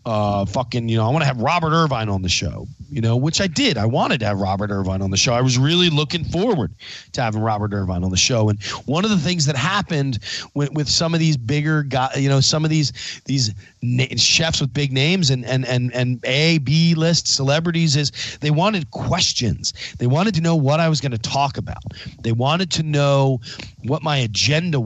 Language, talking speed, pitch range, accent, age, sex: English, 225 wpm, 115-155 Hz, American, 40-59, male